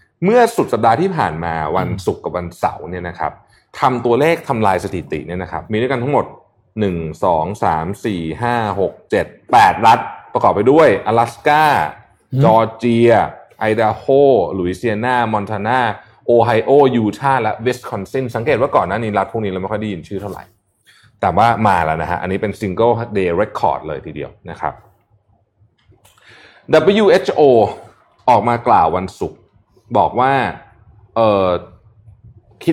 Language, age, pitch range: Thai, 20-39, 100-130 Hz